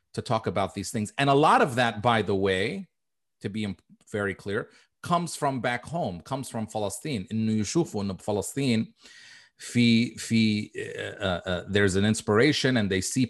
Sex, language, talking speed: male, Arabic, 140 wpm